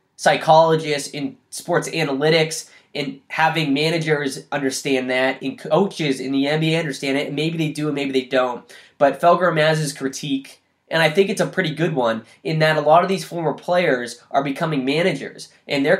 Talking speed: 175 wpm